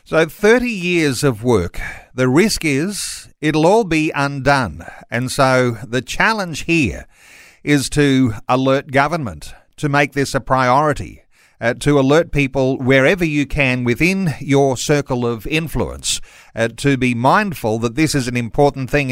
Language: English